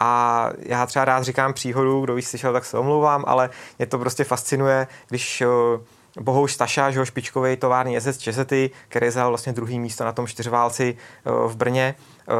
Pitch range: 125-140 Hz